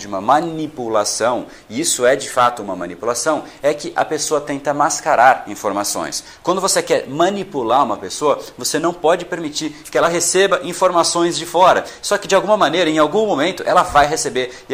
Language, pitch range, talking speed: Portuguese, 130-170 Hz, 185 wpm